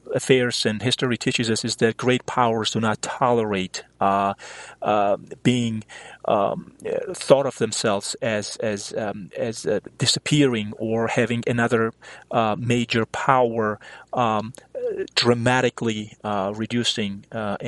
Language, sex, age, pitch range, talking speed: English, male, 30-49, 110-135 Hz, 120 wpm